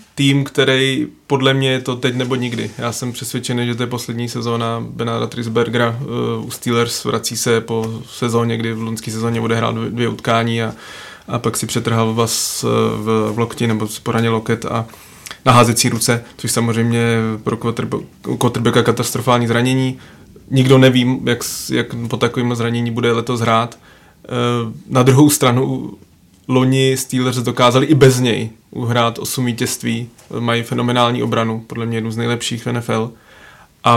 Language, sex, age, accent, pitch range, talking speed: Czech, male, 20-39, native, 115-125 Hz, 160 wpm